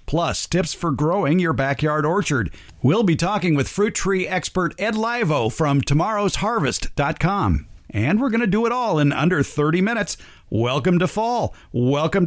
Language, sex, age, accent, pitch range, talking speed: English, male, 50-69, American, 130-185 Hz, 160 wpm